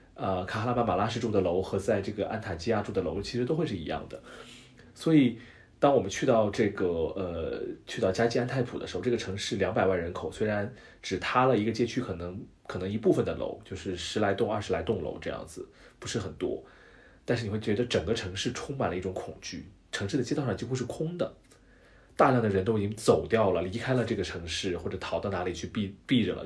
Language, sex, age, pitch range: English, male, 30-49, 95-120 Hz